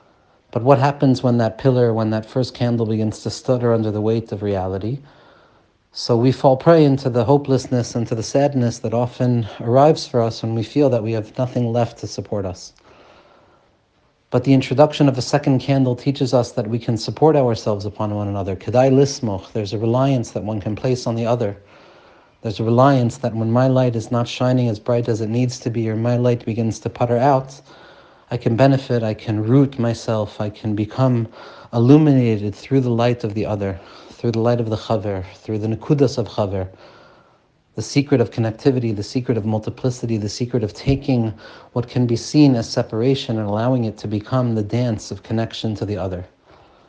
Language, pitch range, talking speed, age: English, 110-130 Hz, 195 wpm, 40-59